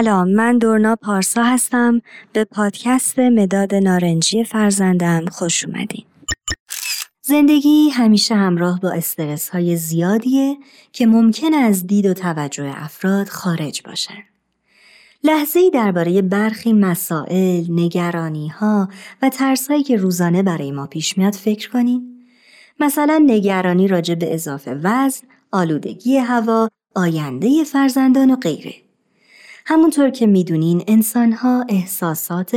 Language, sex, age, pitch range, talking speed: Persian, male, 30-49, 175-245 Hz, 105 wpm